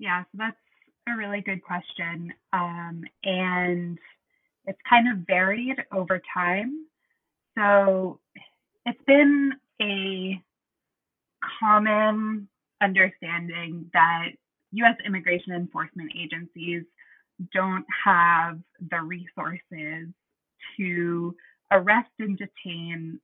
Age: 20-39